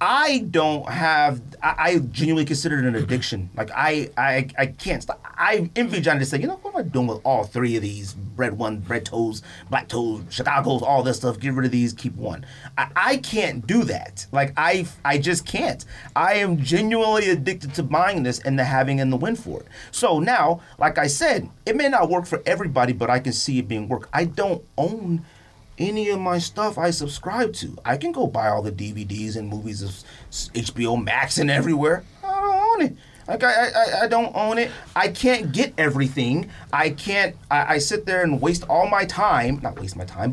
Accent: American